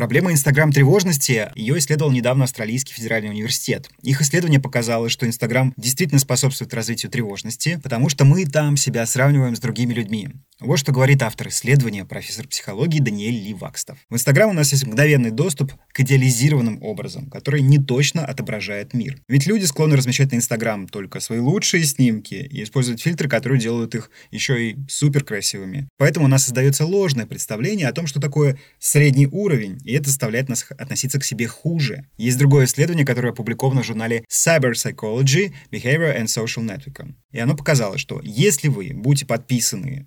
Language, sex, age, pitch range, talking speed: Ukrainian, male, 20-39, 120-145 Hz, 165 wpm